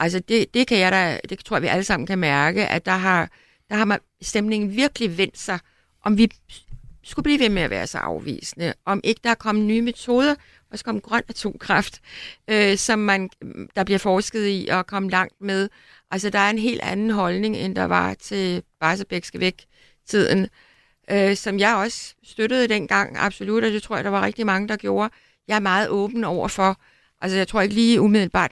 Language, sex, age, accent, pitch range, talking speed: Danish, female, 60-79, native, 190-225 Hz, 210 wpm